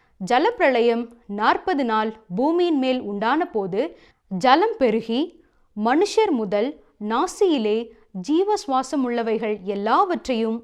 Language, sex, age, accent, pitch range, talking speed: Tamil, female, 20-39, native, 215-290 Hz, 85 wpm